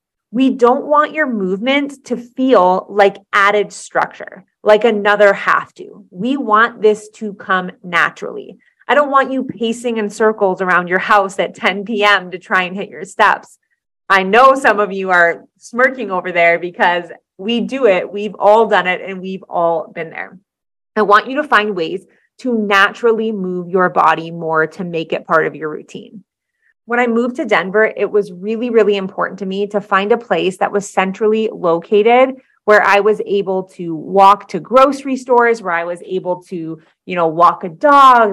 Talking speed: 185 wpm